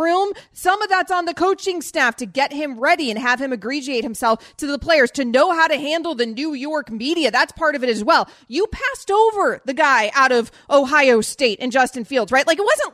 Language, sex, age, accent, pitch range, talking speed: English, female, 30-49, American, 250-330 Hz, 235 wpm